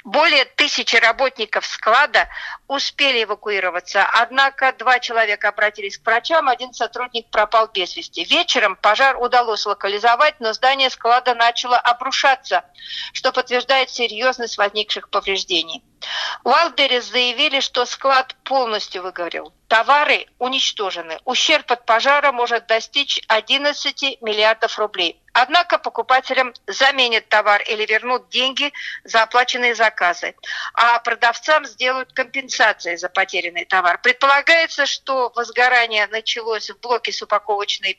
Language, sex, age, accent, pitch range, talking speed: Russian, female, 50-69, native, 215-270 Hz, 115 wpm